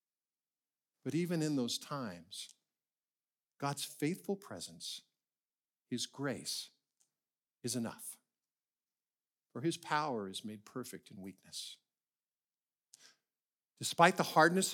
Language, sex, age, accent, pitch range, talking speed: English, male, 50-69, American, 120-180 Hz, 95 wpm